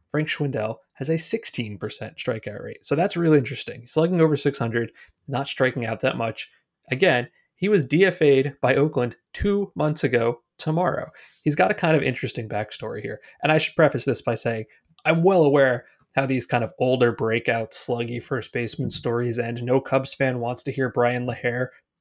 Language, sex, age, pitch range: English, male, 30-49, 120-160 Hz